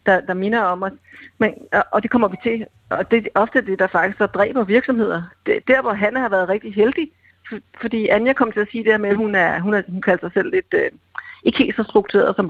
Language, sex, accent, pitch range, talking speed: Danish, female, native, 195-245 Hz, 260 wpm